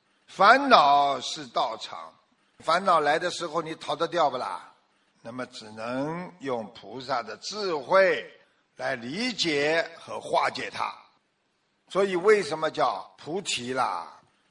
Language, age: Chinese, 50-69